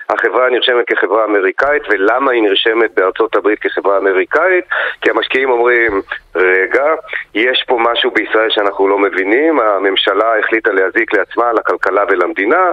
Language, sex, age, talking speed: Hebrew, male, 40-59, 130 wpm